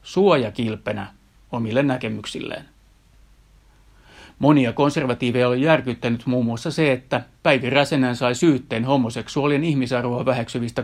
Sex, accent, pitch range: male, native, 115-140 Hz